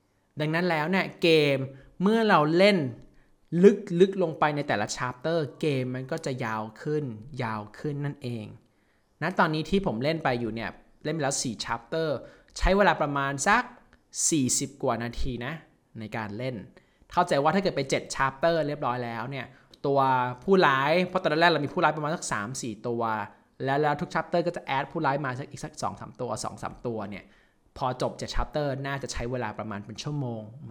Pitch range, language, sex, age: 120-160 Hz, Thai, male, 20-39